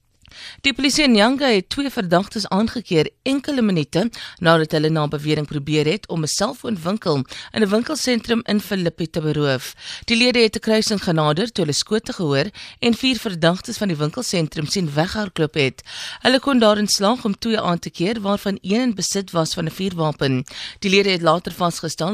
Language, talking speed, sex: English, 185 wpm, female